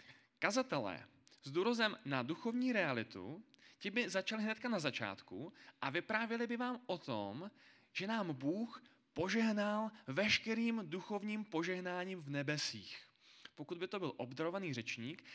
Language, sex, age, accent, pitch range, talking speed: Czech, male, 20-39, native, 140-205 Hz, 130 wpm